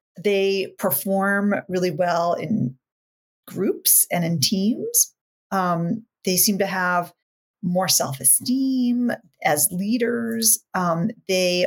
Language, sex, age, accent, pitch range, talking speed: English, female, 40-59, American, 180-230 Hz, 105 wpm